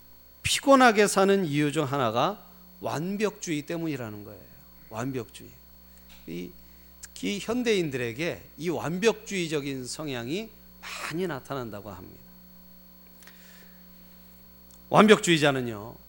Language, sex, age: Korean, male, 40-59